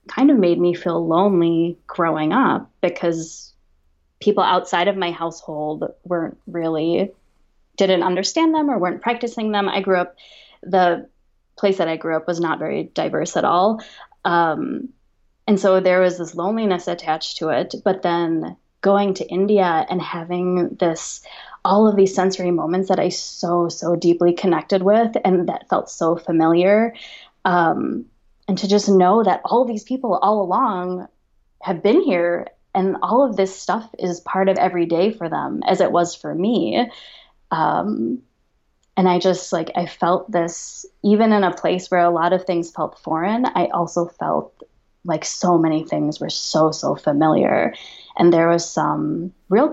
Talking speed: 170 wpm